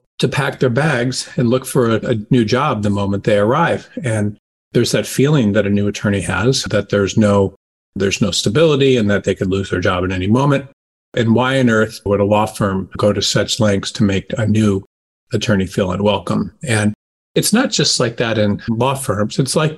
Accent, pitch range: American, 105-125 Hz